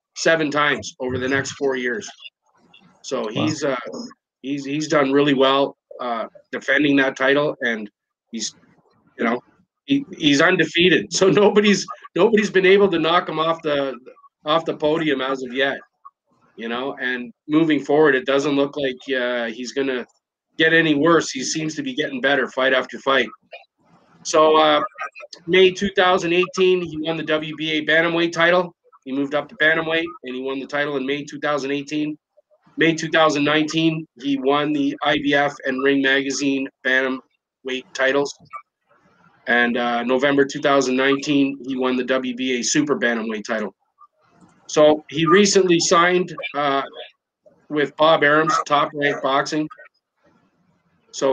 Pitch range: 135-165 Hz